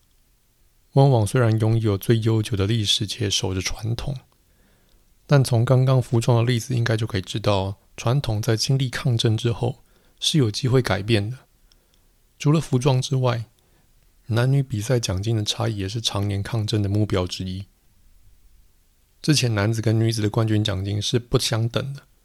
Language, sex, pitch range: Chinese, male, 100-125 Hz